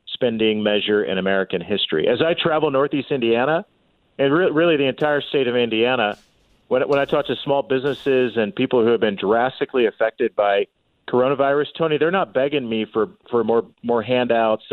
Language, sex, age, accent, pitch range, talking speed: English, male, 40-59, American, 110-135 Hz, 180 wpm